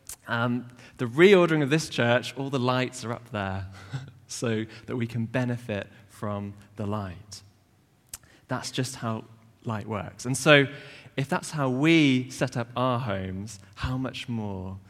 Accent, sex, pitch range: British, male, 100-125 Hz